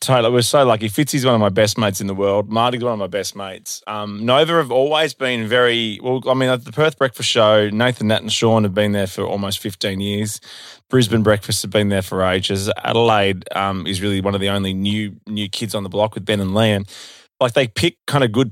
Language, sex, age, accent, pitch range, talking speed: English, male, 20-39, Australian, 105-125 Hz, 250 wpm